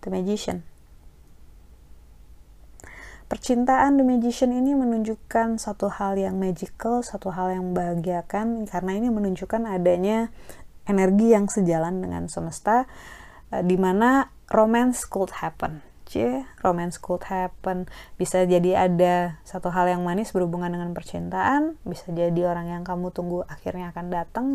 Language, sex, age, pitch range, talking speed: Indonesian, female, 20-39, 175-230 Hz, 130 wpm